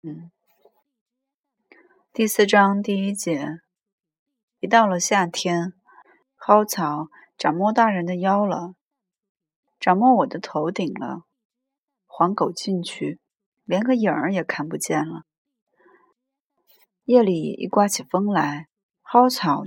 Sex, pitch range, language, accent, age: female, 175-230 Hz, Chinese, native, 30-49